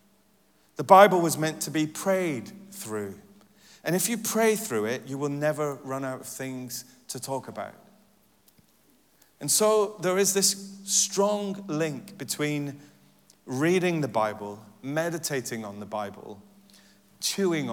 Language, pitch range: English, 135-195 Hz